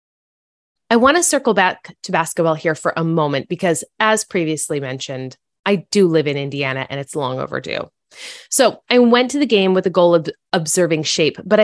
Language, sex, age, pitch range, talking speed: English, female, 20-39, 160-225 Hz, 190 wpm